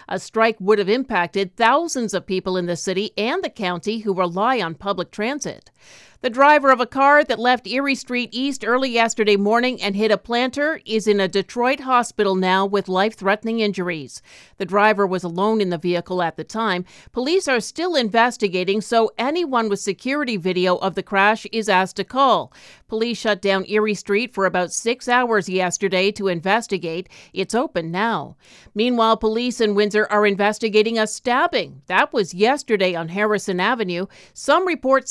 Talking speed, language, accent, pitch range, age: 175 wpm, English, American, 195-235 Hz, 50-69